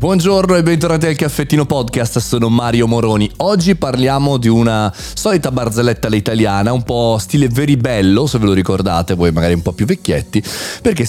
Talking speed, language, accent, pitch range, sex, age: 175 wpm, Italian, native, 100-150 Hz, male, 30-49